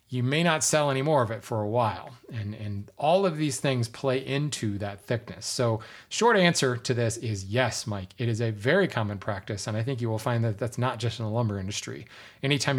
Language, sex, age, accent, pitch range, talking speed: English, male, 30-49, American, 110-145 Hz, 235 wpm